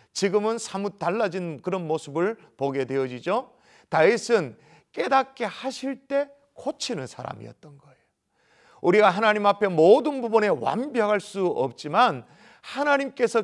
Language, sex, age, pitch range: Korean, male, 40-59, 155-225 Hz